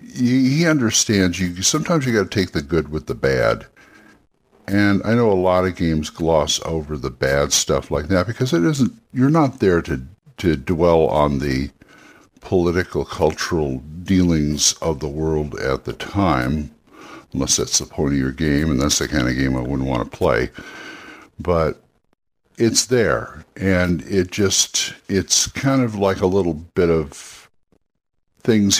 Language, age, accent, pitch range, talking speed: English, 60-79, American, 75-105 Hz, 165 wpm